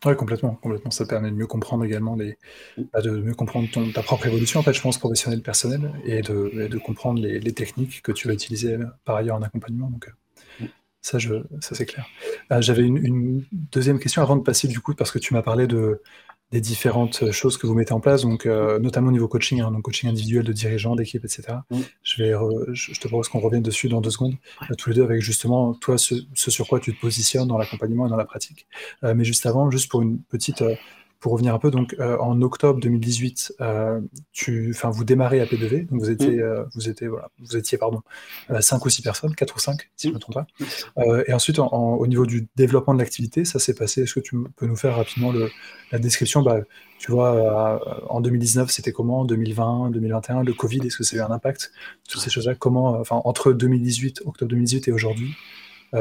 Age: 20-39